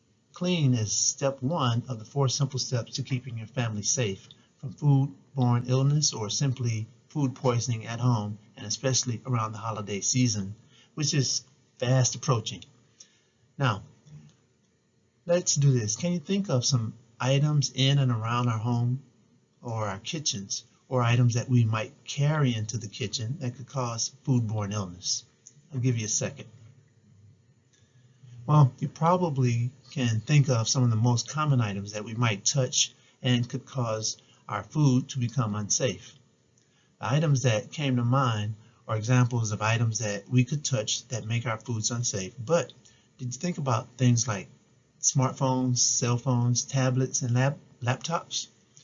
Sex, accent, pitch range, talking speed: male, American, 115-135 Hz, 155 wpm